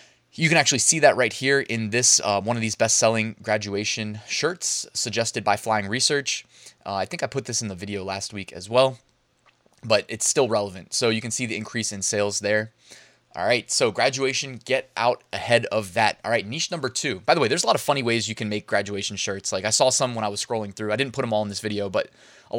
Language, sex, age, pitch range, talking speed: English, male, 20-39, 110-140 Hz, 245 wpm